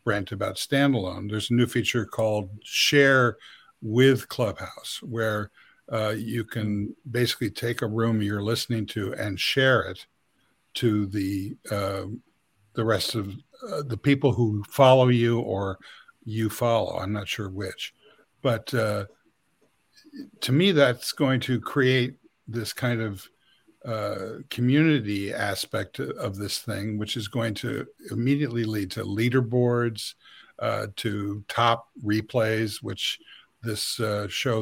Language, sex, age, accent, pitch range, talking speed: English, male, 60-79, American, 105-125 Hz, 135 wpm